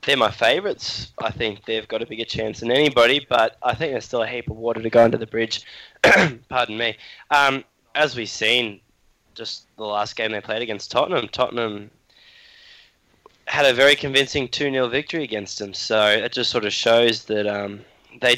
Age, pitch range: 10-29, 110-130 Hz